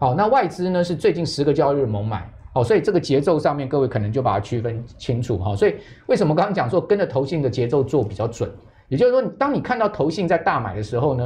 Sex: male